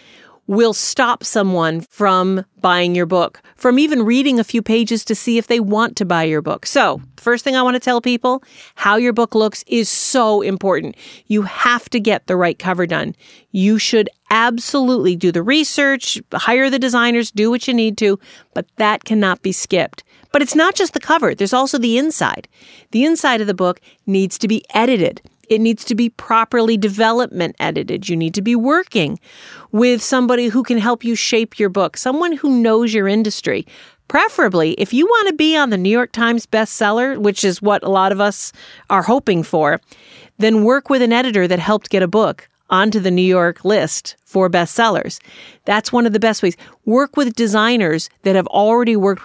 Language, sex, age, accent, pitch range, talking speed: English, female, 40-59, American, 195-245 Hz, 195 wpm